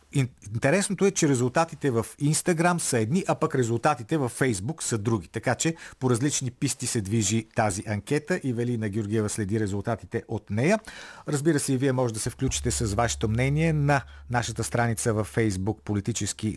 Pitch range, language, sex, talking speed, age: 110-155 Hz, Bulgarian, male, 175 wpm, 50-69